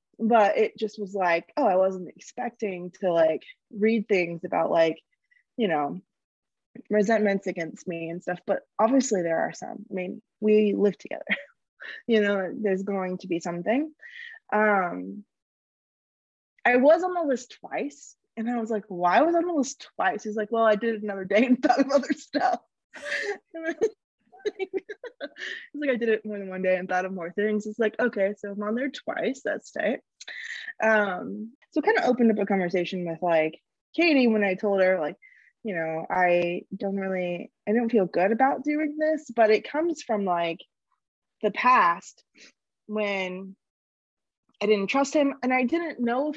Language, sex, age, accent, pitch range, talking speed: English, female, 20-39, American, 195-285 Hz, 180 wpm